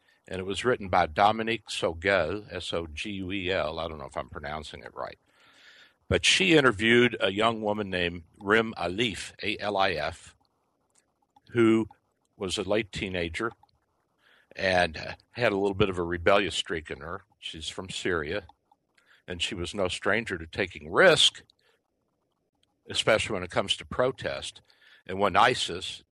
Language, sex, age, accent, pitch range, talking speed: English, male, 60-79, American, 85-110 Hz, 140 wpm